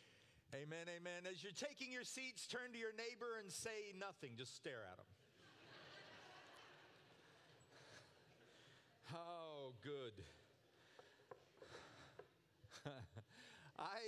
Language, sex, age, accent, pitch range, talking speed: English, male, 40-59, American, 130-195 Hz, 90 wpm